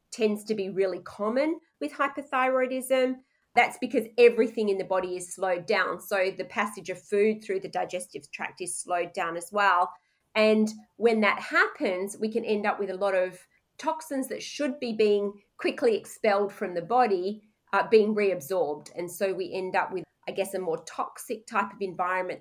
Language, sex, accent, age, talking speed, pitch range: English, female, Australian, 30-49, 185 wpm, 185-220 Hz